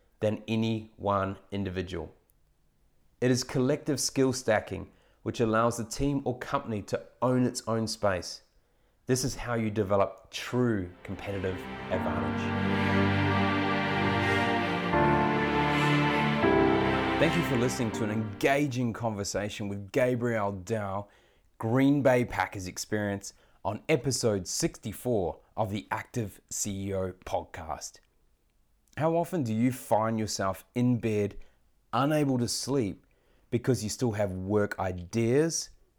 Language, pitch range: English, 95-125 Hz